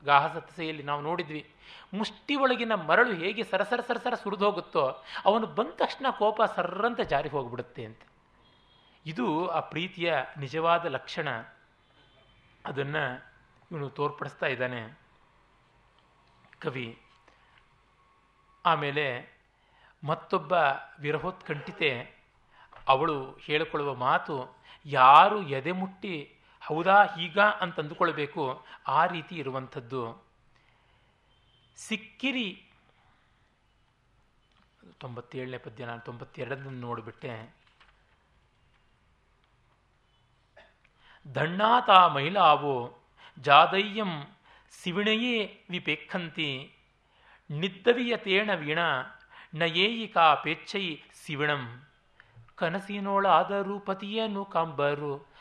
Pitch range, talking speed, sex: 135-195 Hz, 70 wpm, male